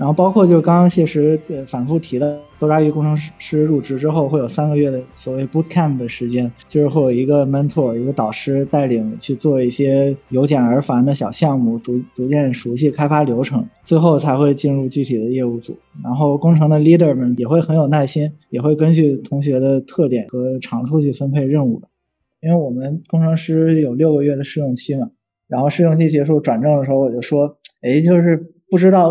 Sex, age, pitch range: male, 20-39, 130-160 Hz